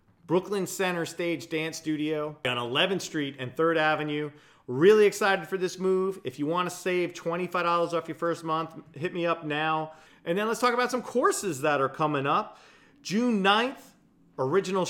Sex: male